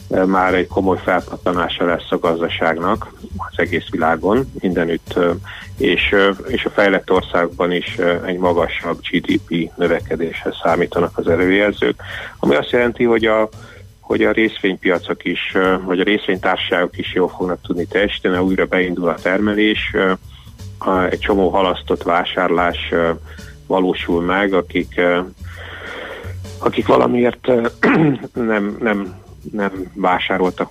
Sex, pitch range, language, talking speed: male, 90-100 Hz, Hungarian, 115 wpm